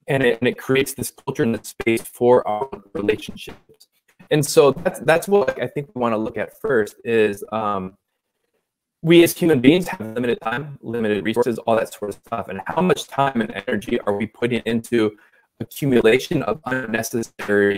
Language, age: English, 20-39